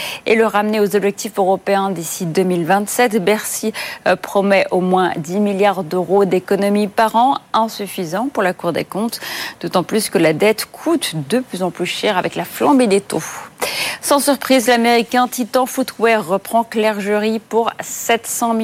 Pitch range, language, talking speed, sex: 190-235 Hz, French, 160 wpm, female